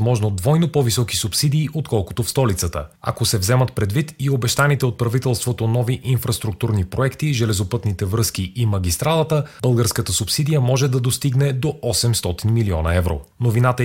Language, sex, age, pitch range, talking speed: Bulgarian, male, 30-49, 105-135 Hz, 140 wpm